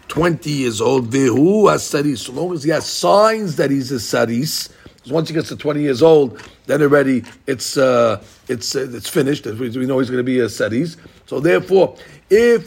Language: English